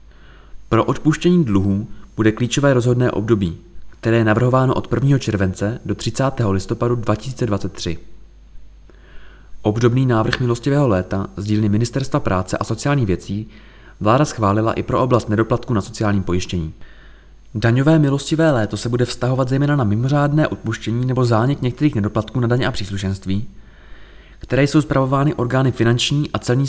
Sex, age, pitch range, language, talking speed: male, 20-39, 105-130 Hz, Czech, 140 wpm